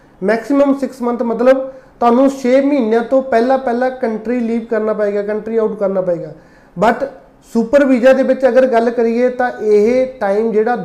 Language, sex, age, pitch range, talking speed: Punjabi, male, 30-49, 210-255 Hz, 165 wpm